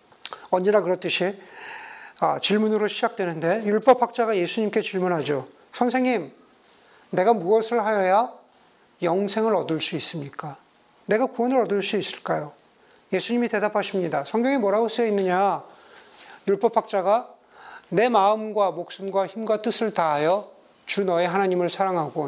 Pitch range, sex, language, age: 180-225 Hz, male, Korean, 40-59